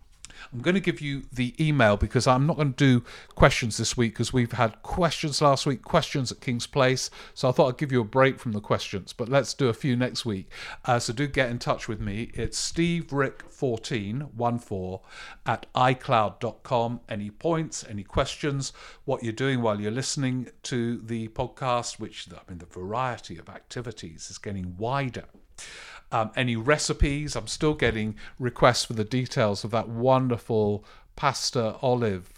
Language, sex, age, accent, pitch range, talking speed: English, male, 50-69, British, 105-135 Hz, 180 wpm